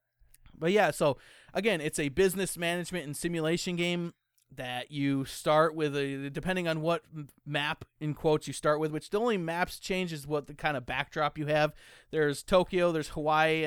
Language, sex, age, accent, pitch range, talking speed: English, male, 30-49, American, 140-170 Hz, 175 wpm